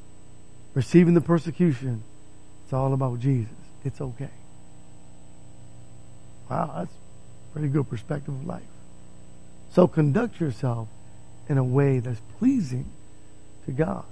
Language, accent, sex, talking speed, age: English, American, male, 115 wpm, 50-69